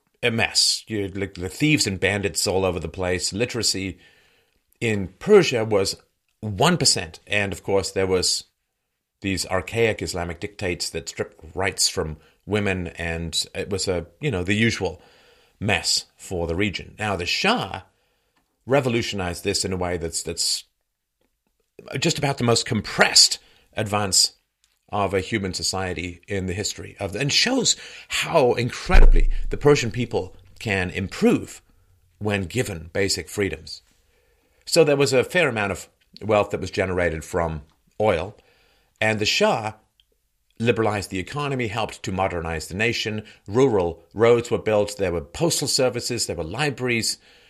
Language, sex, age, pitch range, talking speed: English, male, 40-59, 90-115 Hz, 145 wpm